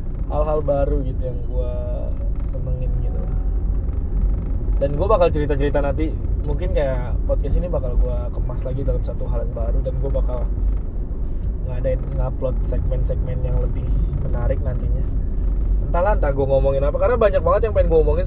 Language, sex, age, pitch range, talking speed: Indonesian, male, 20-39, 80-130 Hz, 170 wpm